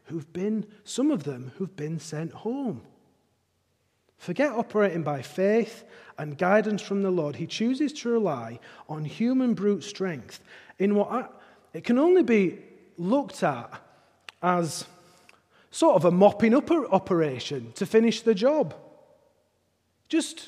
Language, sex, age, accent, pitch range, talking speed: English, male, 40-59, British, 135-210 Hz, 140 wpm